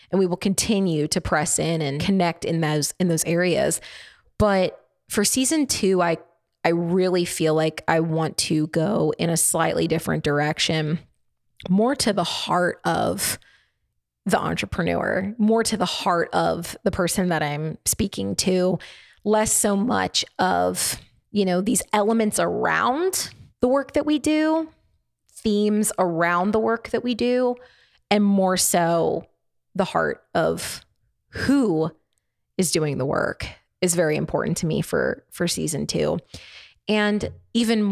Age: 20-39